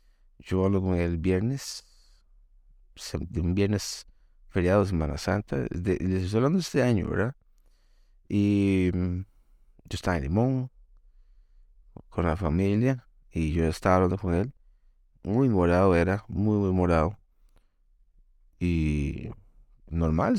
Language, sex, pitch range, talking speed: Spanish, male, 80-105 Hz, 120 wpm